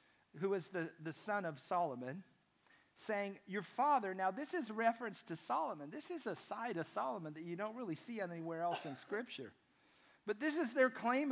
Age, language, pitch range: 50-69, English, 185-245 Hz